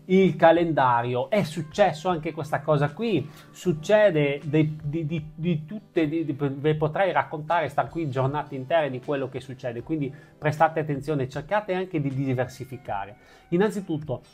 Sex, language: male, Italian